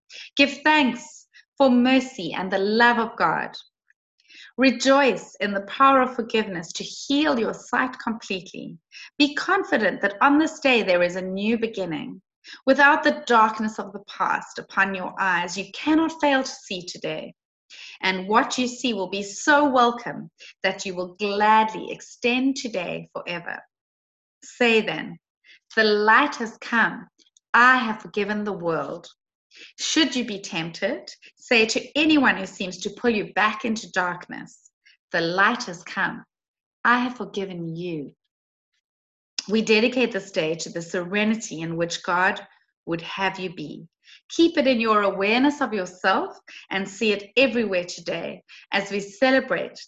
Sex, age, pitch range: female, 30-49, 185-255 Hz